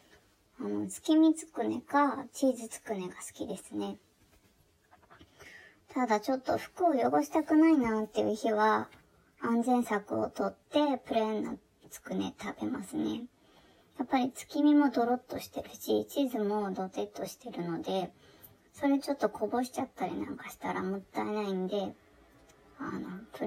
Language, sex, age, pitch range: Japanese, male, 20-39, 210-280 Hz